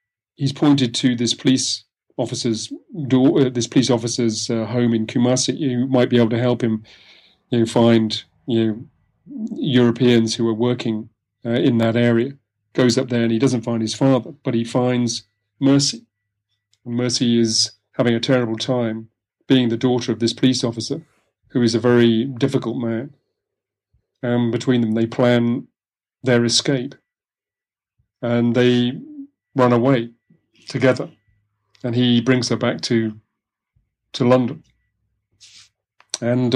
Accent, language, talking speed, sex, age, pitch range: British, English, 145 wpm, male, 40-59, 115-130 Hz